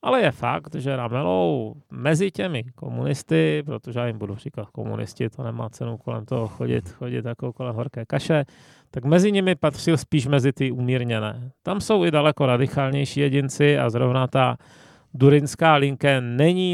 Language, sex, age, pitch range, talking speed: Czech, male, 30-49, 120-150 Hz, 160 wpm